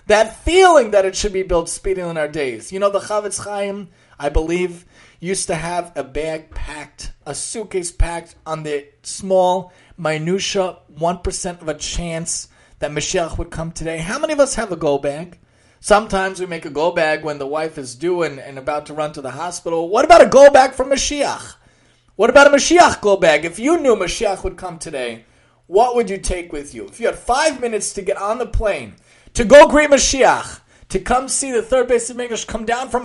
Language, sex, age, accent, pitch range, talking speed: English, male, 30-49, American, 165-240 Hz, 210 wpm